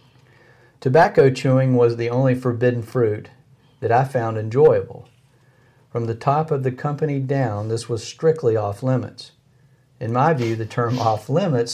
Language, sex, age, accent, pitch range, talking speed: English, male, 50-69, American, 120-130 Hz, 155 wpm